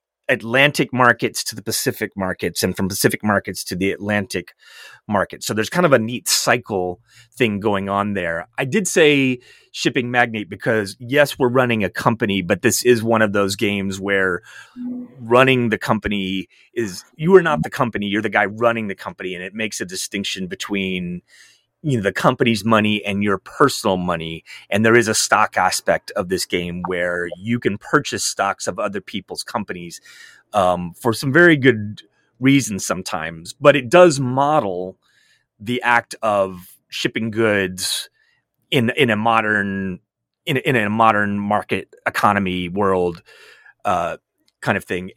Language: English